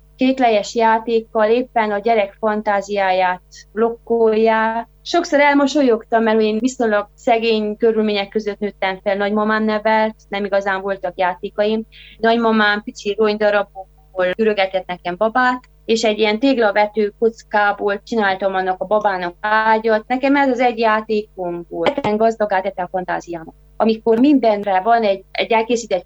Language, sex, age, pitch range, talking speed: Hungarian, female, 20-39, 200-240 Hz, 125 wpm